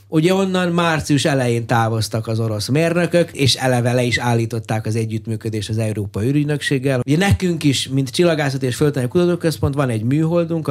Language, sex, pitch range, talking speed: Hungarian, male, 115-165 Hz, 155 wpm